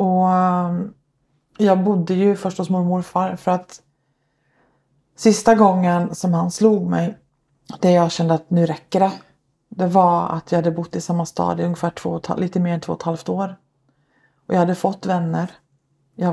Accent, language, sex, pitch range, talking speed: native, Swedish, female, 150-185 Hz, 180 wpm